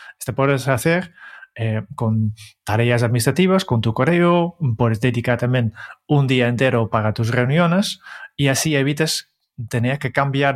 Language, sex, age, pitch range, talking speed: Spanish, male, 30-49, 120-150 Hz, 140 wpm